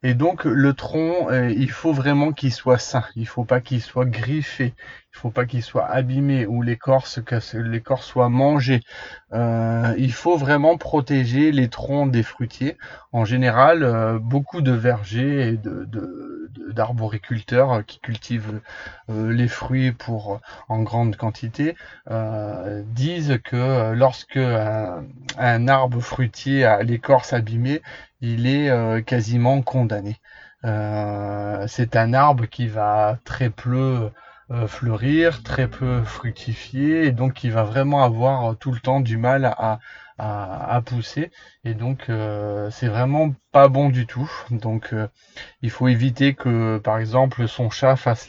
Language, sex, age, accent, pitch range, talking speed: French, male, 30-49, French, 115-135 Hz, 150 wpm